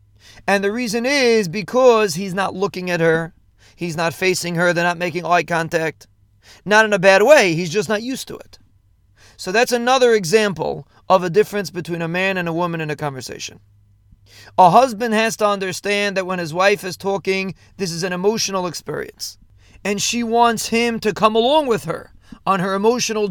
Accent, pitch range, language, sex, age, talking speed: American, 165-215 Hz, English, male, 30-49, 190 wpm